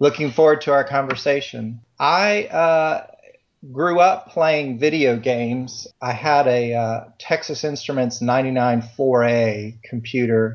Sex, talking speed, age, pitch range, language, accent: male, 115 wpm, 40-59, 115-130 Hz, English, American